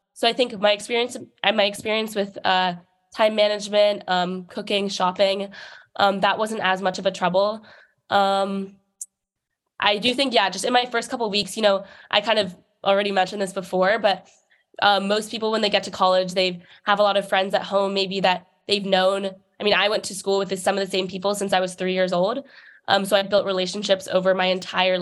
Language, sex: English, female